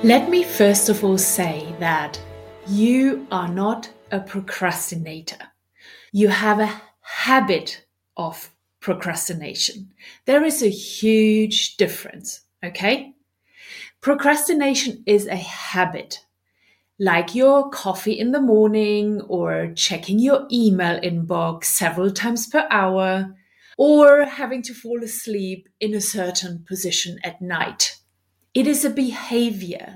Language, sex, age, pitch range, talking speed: English, female, 30-49, 180-235 Hz, 115 wpm